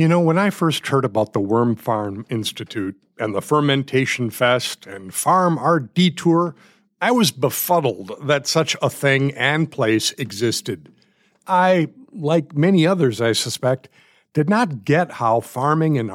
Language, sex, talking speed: English, male, 150 wpm